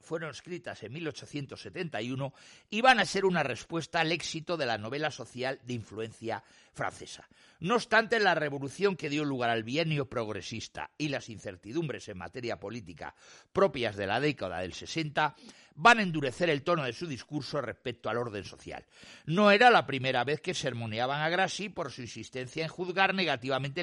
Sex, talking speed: male, 170 wpm